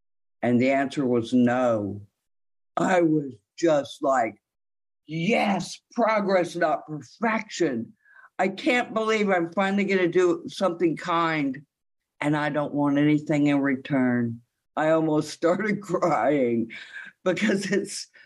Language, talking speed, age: English, 120 wpm, 50-69